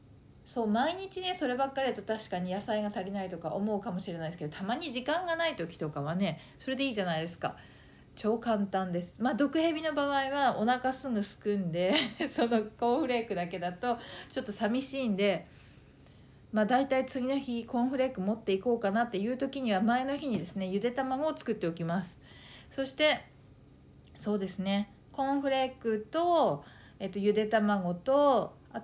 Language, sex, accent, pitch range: Japanese, female, native, 190-255 Hz